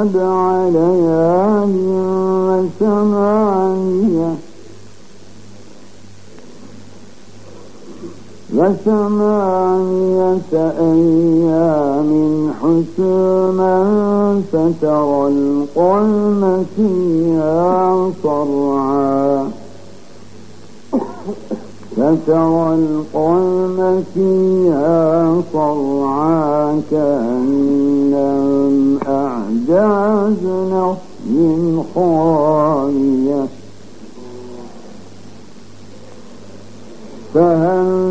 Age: 60-79